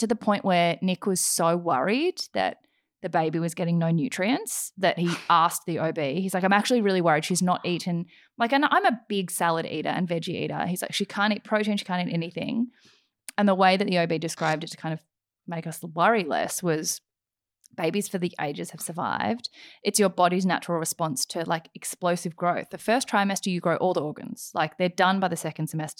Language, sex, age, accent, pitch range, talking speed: English, female, 20-39, Australian, 165-210 Hz, 215 wpm